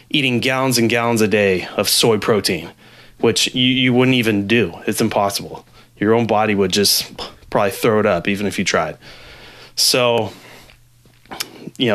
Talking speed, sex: 160 wpm, male